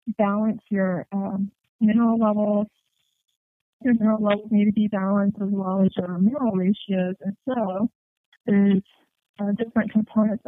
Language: English